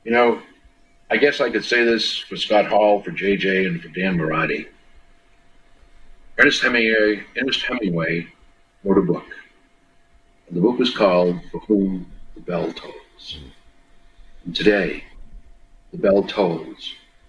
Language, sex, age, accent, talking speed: English, male, 60-79, American, 135 wpm